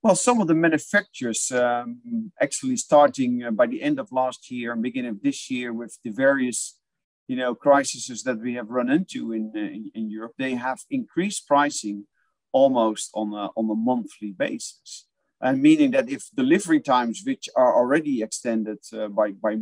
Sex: male